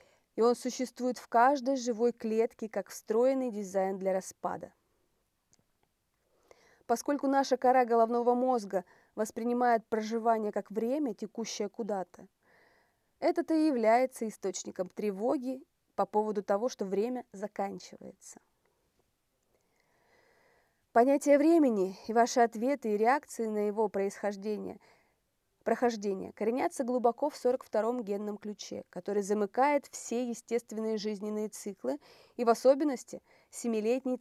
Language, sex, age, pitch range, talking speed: Russian, female, 30-49, 210-260 Hz, 110 wpm